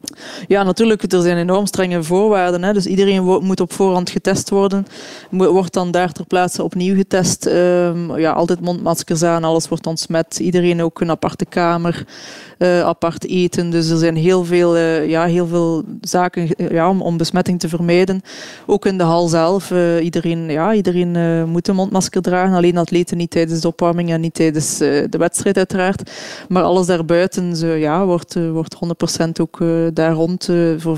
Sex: female